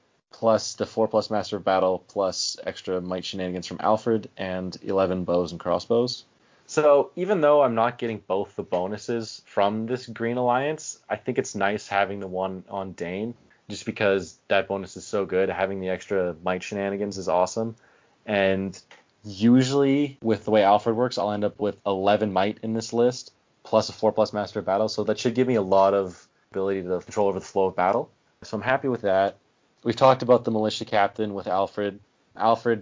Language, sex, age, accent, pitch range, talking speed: English, male, 20-39, American, 95-110 Hz, 190 wpm